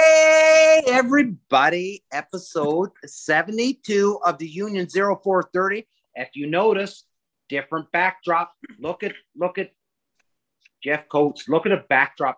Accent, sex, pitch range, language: American, male, 140-185 Hz, English